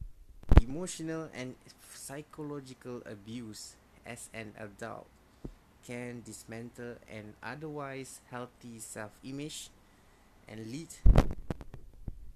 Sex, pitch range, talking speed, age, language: male, 105-130 Hz, 80 wpm, 20-39, English